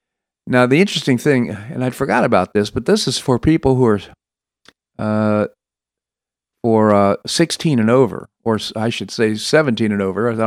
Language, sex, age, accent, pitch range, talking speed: English, male, 50-69, American, 105-135 Hz, 170 wpm